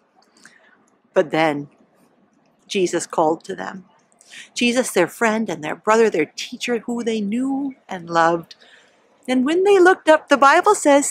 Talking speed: 145 wpm